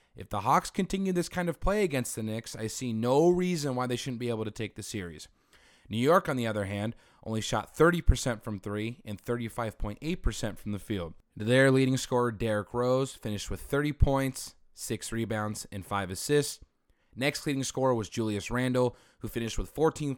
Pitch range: 105-135 Hz